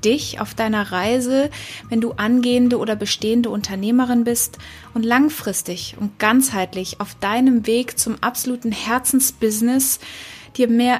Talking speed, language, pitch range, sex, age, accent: 125 wpm, German, 205-240 Hz, female, 20-39, German